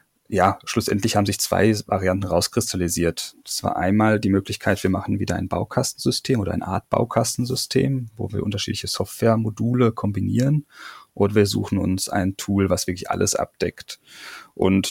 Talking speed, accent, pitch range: 150 wpm, German, 100-115 Hz